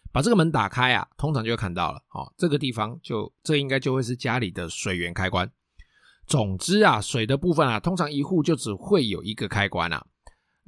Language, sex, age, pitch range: Chinese, male, 20-39, 100-140 Hz